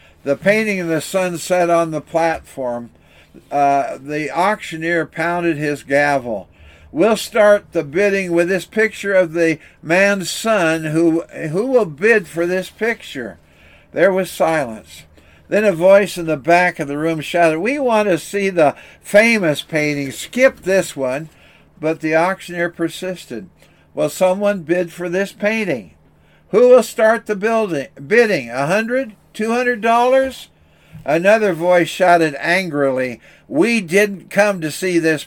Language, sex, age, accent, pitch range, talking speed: English, male, 60-79, American, 150-200 Hz, 145 wpm